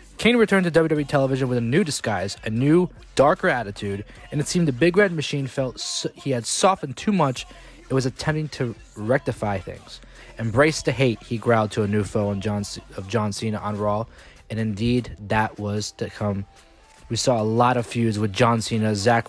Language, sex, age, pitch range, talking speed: English, male, 20-39, 110-135 Hz, 205 wpm